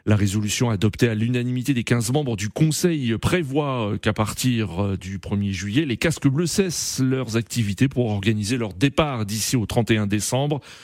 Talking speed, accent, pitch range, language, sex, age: 165 wpm, French, 115-150 Hz, French, male, 40-59